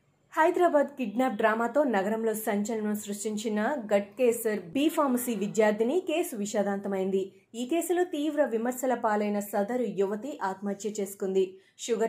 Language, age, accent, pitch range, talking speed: Telugu, 20-39, native, 205-270 Hz, 105 wpm